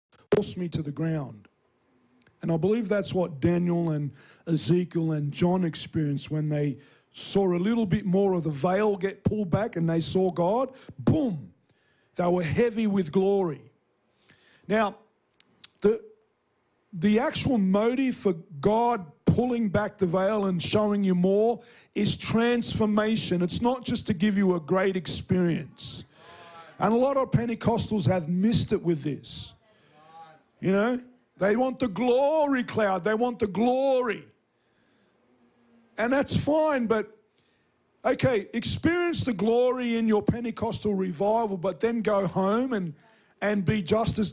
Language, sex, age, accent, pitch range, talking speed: English, male, 50-69, Australian, 180-235 Hz, 145 wpm